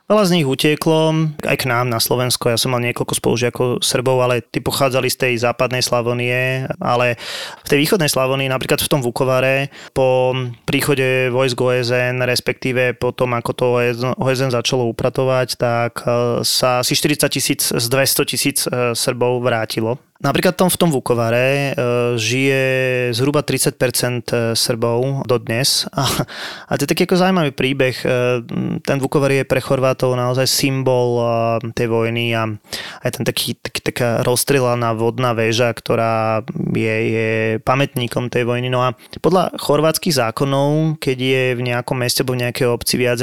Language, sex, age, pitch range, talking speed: Slovak, male, 20-39, 120-135 Hz, 150 wpm